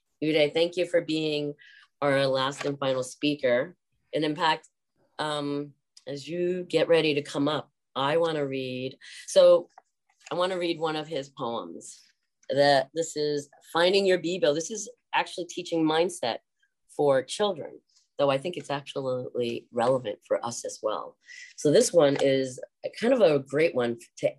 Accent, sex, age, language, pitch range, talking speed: American, female, 30-49, English, 135-175 Hz, 160 wpm